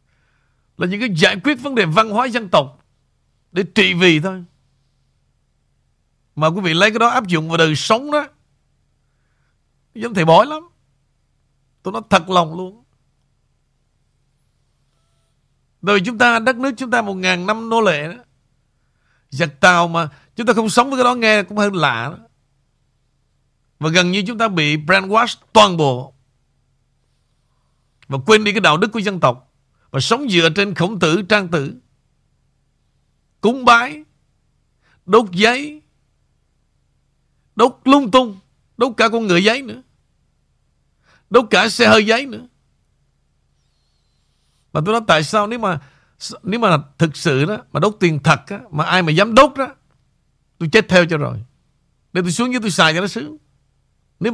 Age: 60-79